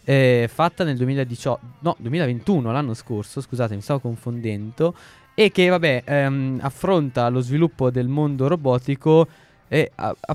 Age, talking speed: 20-39, 140 wpm